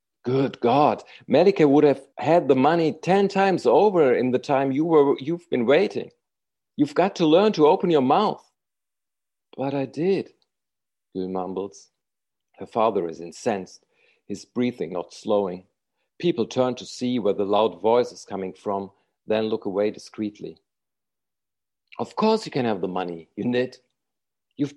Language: English